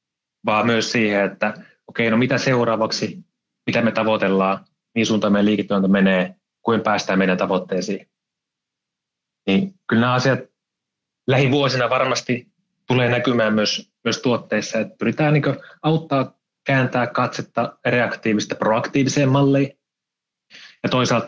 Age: 20-39